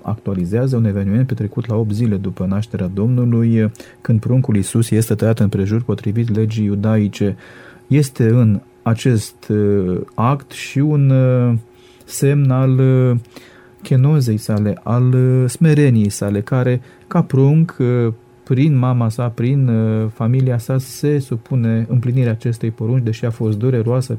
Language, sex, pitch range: Romanian, male, 110-130 Hz